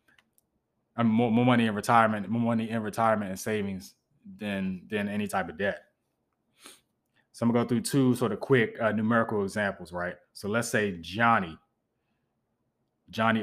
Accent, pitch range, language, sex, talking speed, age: American, 95-115 Hz, English, male, 165 wpm, 20-39